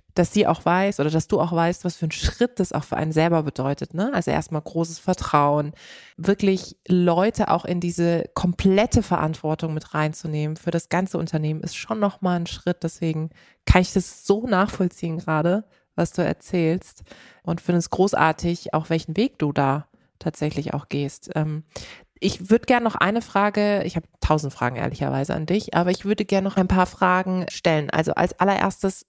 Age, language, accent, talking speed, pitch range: 20-39, German, German, 190 wpm, 165-195 Hz